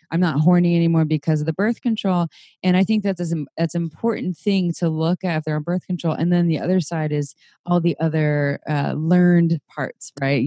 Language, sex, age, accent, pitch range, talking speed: English, female, 20-39, American, 150-175 Hz, 210 wpm